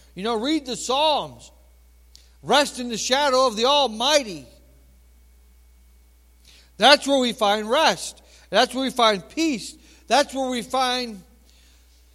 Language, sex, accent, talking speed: English, male, American, 130 wpm